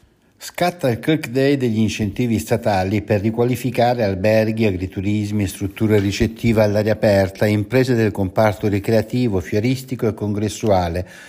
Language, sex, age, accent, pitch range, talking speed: Italian, male, 60-79, native, 100-125 Hz, 115 wpm